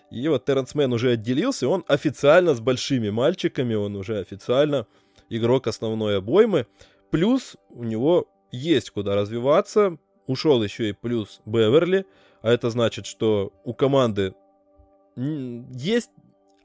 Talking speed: 125 wpm